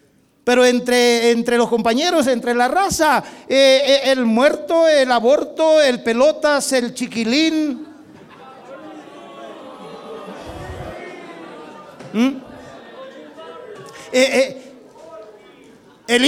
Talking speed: 80 wpm